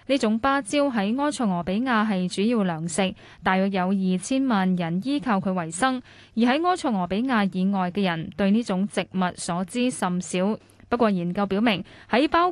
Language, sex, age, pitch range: Chinese, female, 10-29, 185-245 Hz